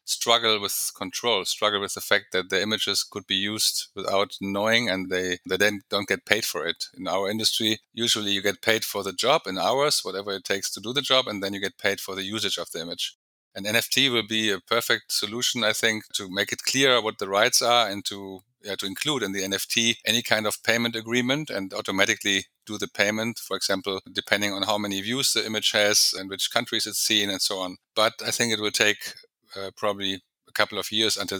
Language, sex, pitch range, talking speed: English, male, 100-115 Hz, 230 wpm